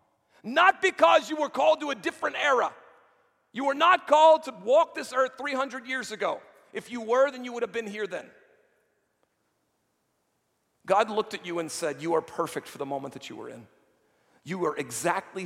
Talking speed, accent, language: 190 wpm, American, English